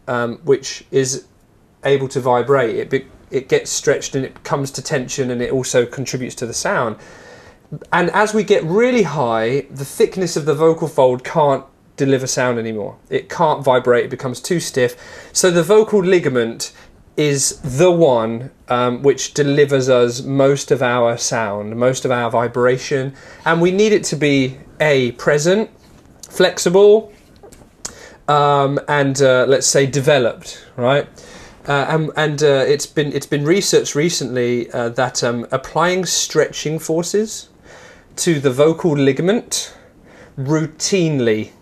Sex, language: male, English